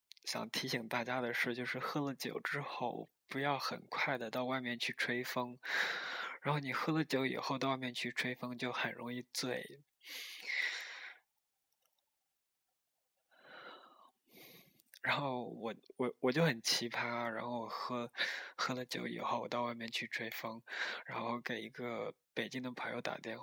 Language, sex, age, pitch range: Chinese, male, 20-39, 120-160 Hz